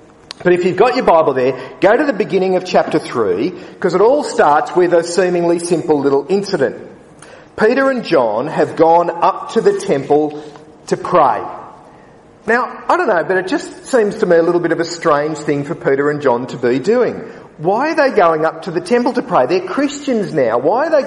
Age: 40-59